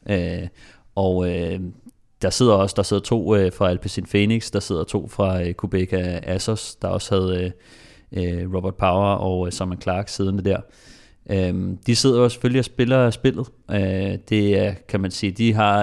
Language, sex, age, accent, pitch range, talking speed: Danish, male, 30-49, native, 95-105 Hz, 180 wpm